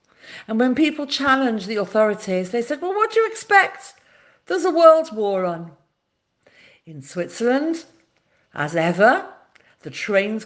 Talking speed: 140 wpm